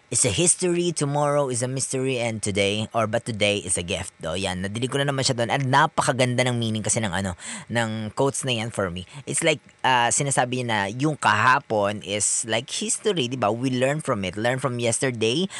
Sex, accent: female, native